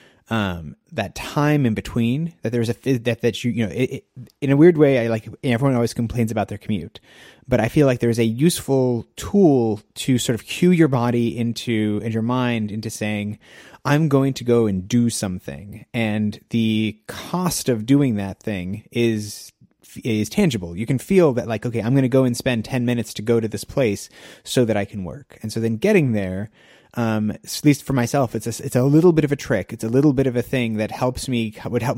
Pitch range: 110-135 Hz